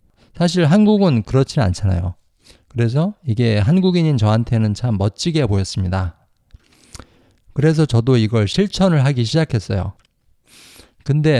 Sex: male